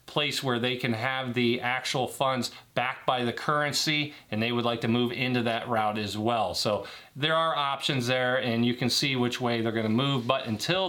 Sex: male